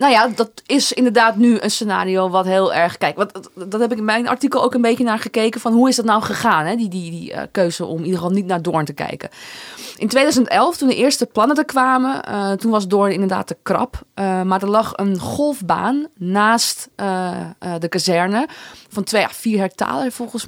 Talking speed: 225 wpm